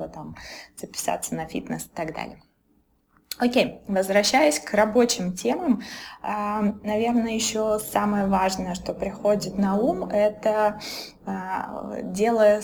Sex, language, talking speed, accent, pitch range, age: female, Russian, 110 wpm, native, 195-230 Hz, 20-39